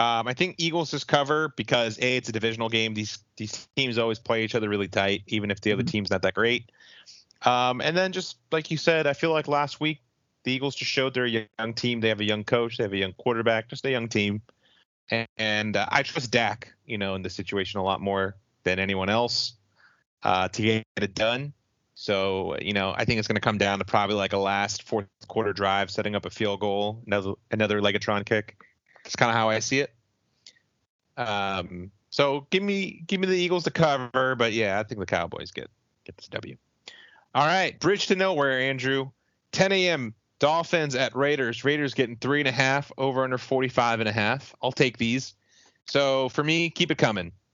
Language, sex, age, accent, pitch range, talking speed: English, male, 30-49, American, 105-135 Hz, 215 wpm